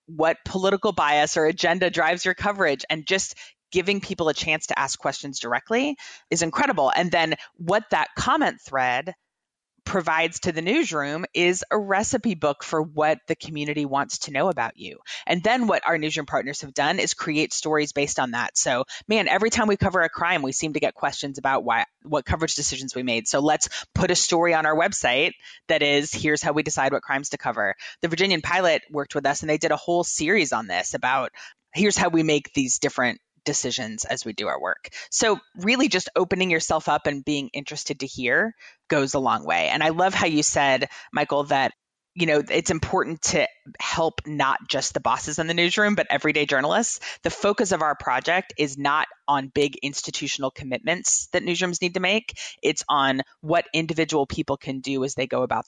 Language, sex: English, female